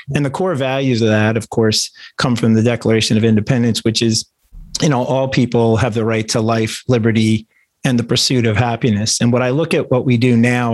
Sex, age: male, 40-59